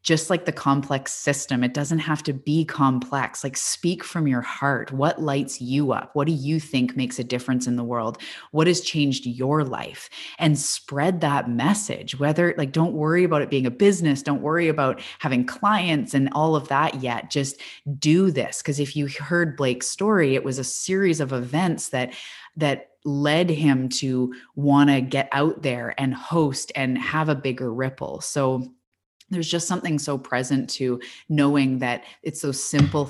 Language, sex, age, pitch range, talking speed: English, female, 20-39, 125-145 Hz, 185 wpm